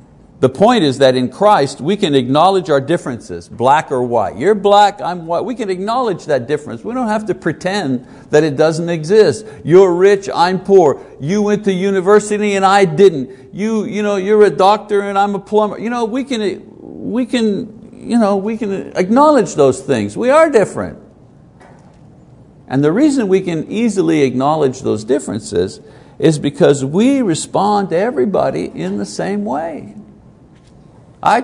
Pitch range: 140-205 Hz